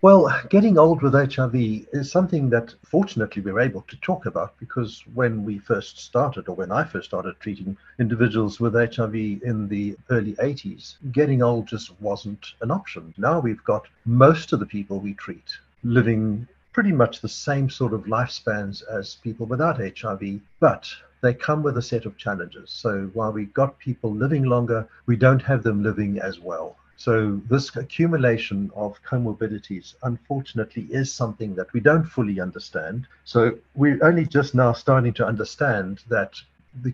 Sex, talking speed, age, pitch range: male, 170 wpm, 60-79, 110-135 Hz